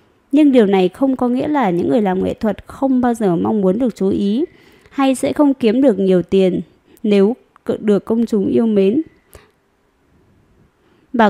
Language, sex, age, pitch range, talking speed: Vietnamese, female, 20-39, 195-255 Hz, 180 wpm